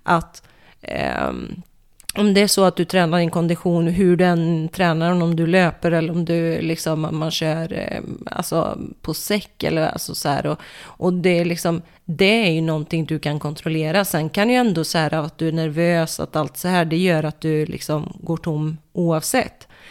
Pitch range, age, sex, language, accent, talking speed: 160-185 Hz, 30-49, female, Swedish, native, 190 wpm